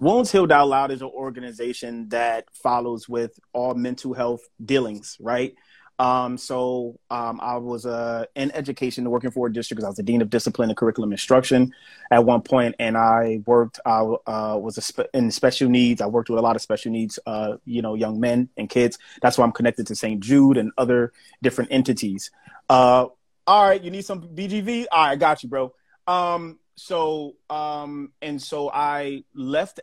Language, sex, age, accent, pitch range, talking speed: English, male, 30-49, American, 120-140 Hz, 195 wpm